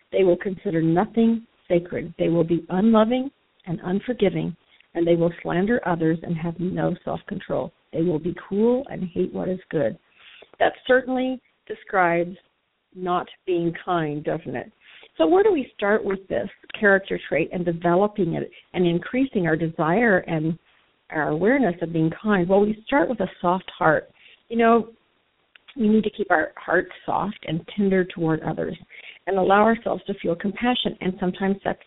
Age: 50-69